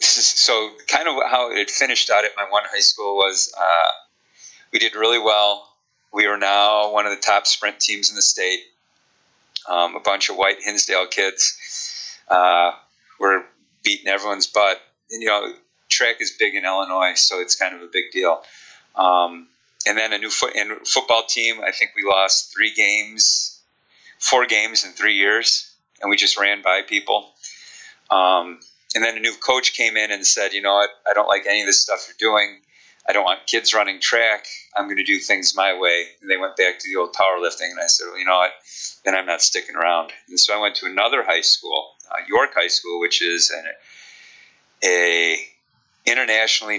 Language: English